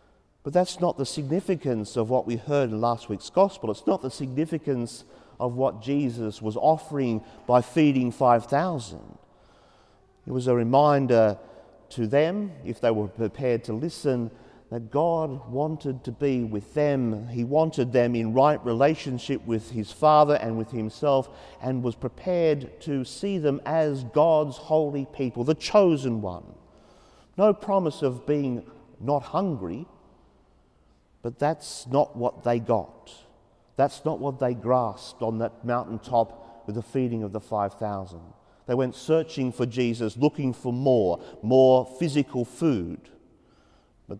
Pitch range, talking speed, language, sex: 115-150 Hz, 145 wpm, English, male